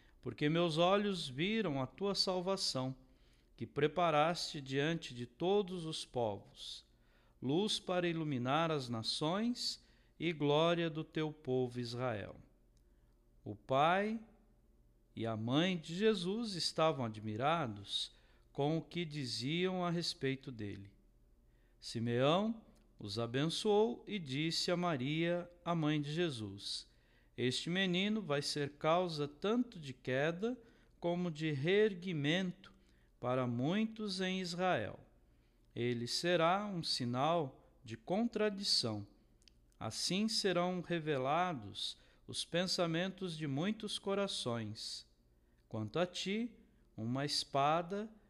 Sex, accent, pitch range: male, Brazilian, 120-180 Hz